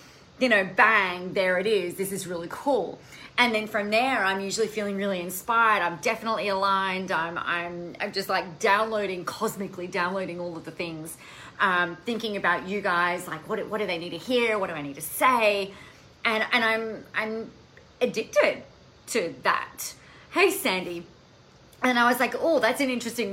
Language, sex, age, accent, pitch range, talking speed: English, female, 30-49, Australian, 185-245 Hz, 180 wpm